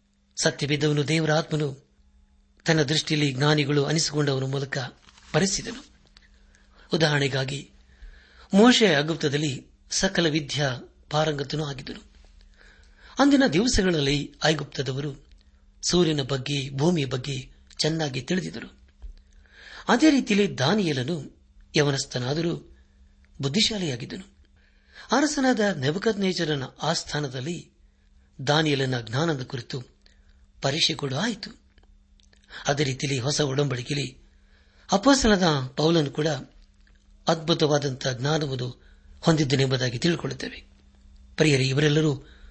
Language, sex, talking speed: Kannada, male, 75 wpm